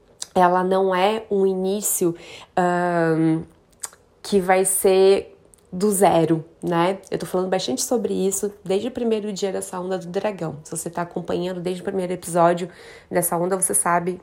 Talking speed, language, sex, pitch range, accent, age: 155 wpm, Portuguese, female, 175-205 Hz, Brazilian, 20-39